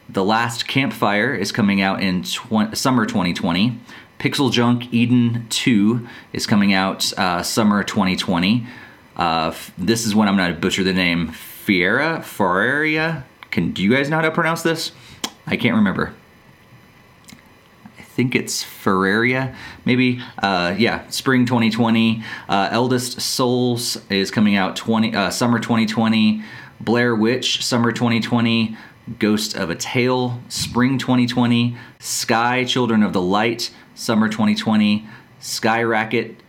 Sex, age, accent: male, 30-49, American